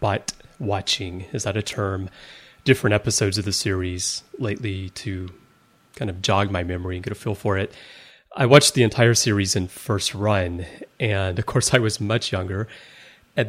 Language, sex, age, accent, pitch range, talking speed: English, male, 30-49, American, 95-120 Hz, 180 wpm